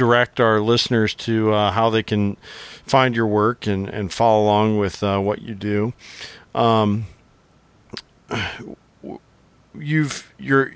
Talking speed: 130 wpm